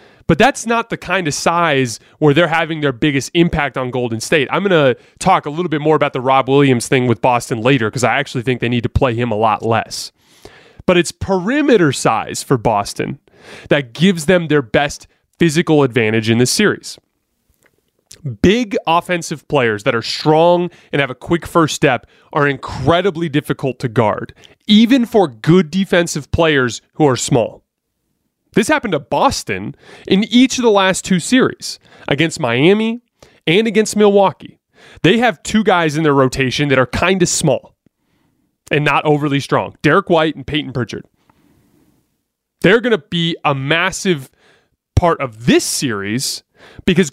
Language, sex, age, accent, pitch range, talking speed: English, male, 30-49, American, 135-180 Hz, 170 wpm